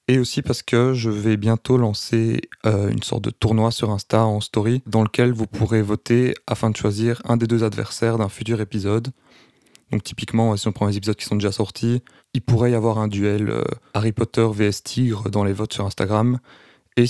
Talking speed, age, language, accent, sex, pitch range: 210 wpm, 20-39, French, French, male, 105-115 Hz